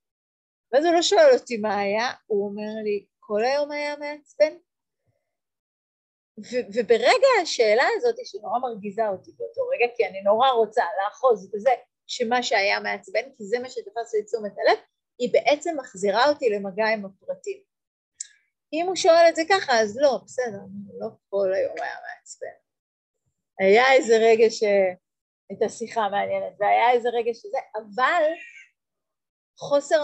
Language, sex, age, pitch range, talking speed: Hebrew, female, 30-49, 205-275 Hz, 150 wpm